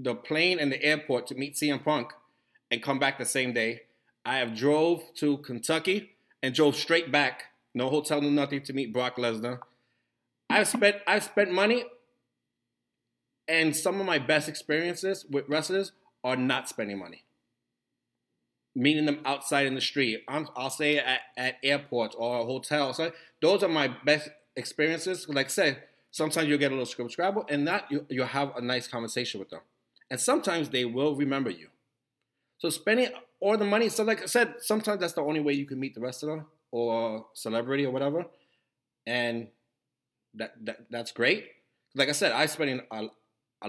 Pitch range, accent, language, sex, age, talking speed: 120-155 Hz, American, English, male, 30-49, 185 wpm